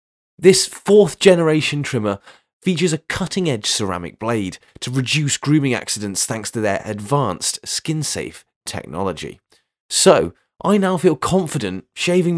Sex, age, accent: male, 20-39, British